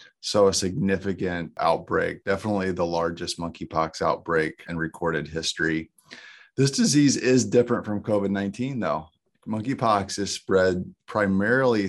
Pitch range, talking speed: 85-100 Hz, 115 wpm